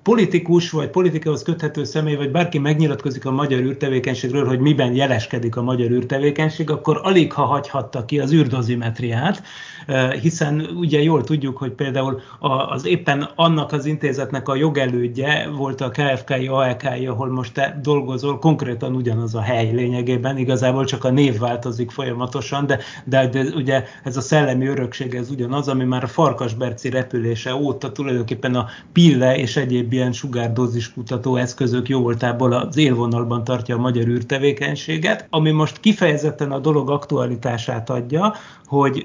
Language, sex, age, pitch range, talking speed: Hungarian, male, 30-49, 125-145 Hz, 150 wpm